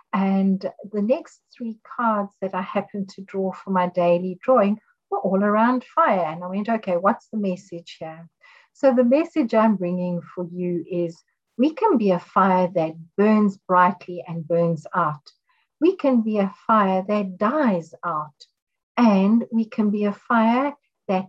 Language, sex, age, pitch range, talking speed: English, female, 60-79, 180-230 Hz, 170 wpm